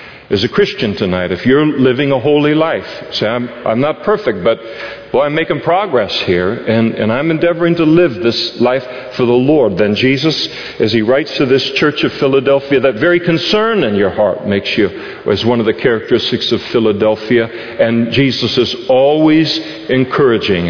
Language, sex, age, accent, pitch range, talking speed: English, male, 50-69, American, 115-150 Hz, 180 wpm